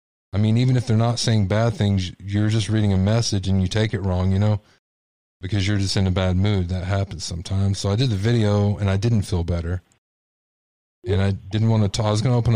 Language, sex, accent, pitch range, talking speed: English, male, American, 90-105 Hz, 250 wpm